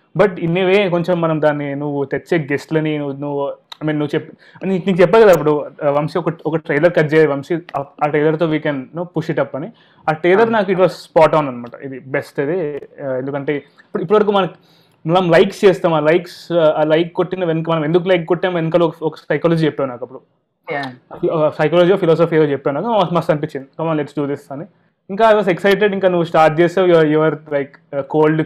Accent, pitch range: native, 145-180 Hz